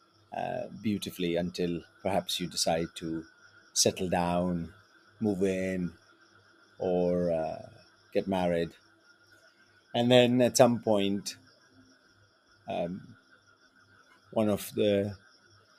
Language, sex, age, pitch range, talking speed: English, male, 30-49, 90-110 Hz, 90 wpm